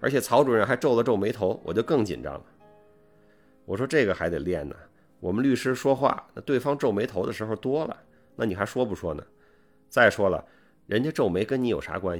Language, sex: Chinese, male